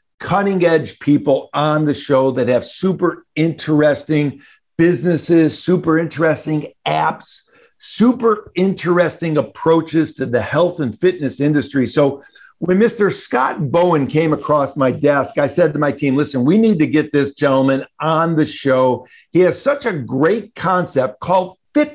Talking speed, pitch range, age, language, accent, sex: 150 wpm, 145-180 Hz, 50-69, English, American, male